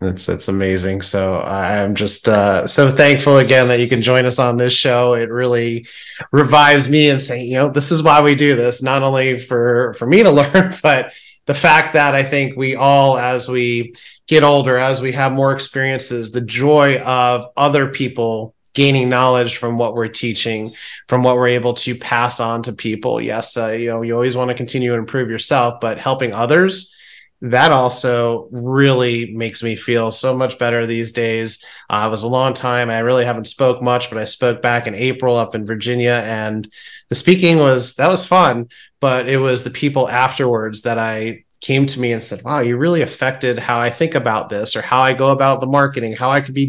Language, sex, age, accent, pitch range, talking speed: English, male, 30-49, American, 115-135 Hz, 210 wpm